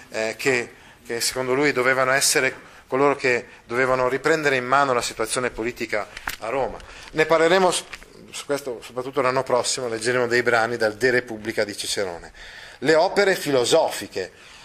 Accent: native